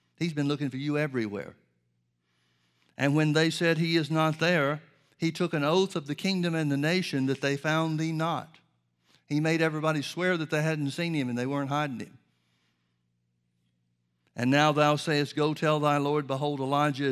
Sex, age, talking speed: male, 60-79, 185 wpm